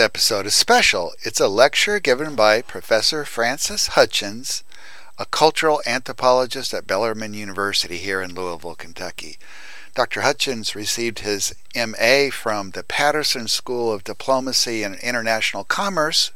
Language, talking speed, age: English, 130 wpm, 60-79